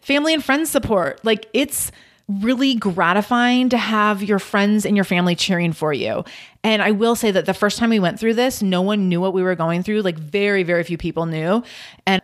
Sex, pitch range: female, 185-245 Hz